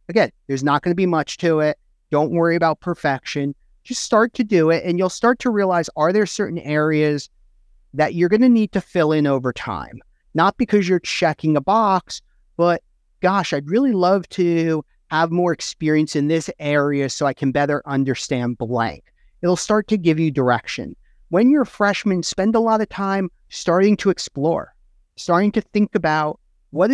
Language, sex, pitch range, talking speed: English, male, 150-200 Hz, 185 wpm